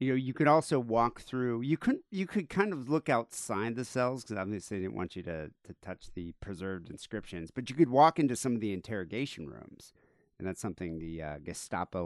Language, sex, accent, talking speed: English, male, American, 225 wpm